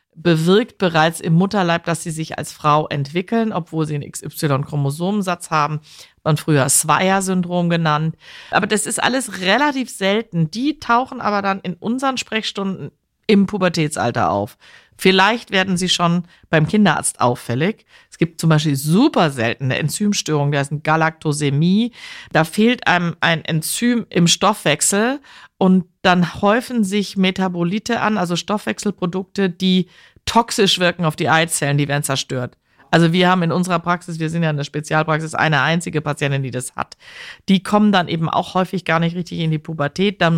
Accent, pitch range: German, 155-200 Hz